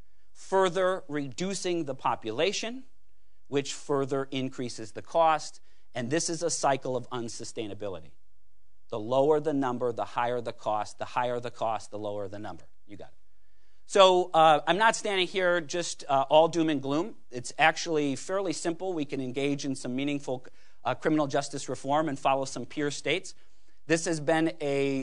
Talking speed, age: 170 wpm, 40-59